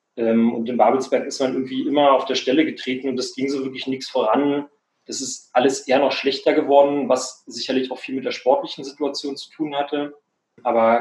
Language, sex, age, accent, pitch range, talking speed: German, male, 30-49, German, 115-130 Hz, 200 wpm